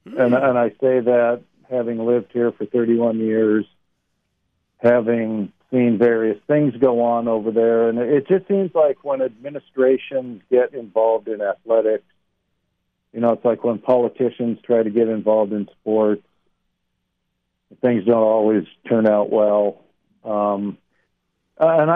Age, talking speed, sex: 50-69, 135 wpm, male